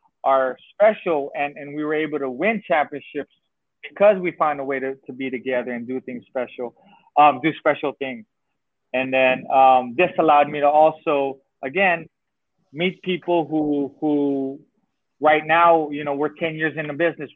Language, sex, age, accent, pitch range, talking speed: English, male, 20-39, American, 135-165 Hz, 175 wpm